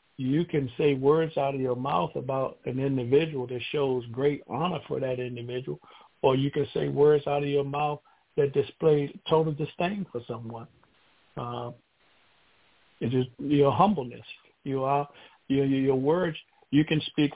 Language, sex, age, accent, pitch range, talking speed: English, male, 60-79, American, 130-155 Hz, 165 wpm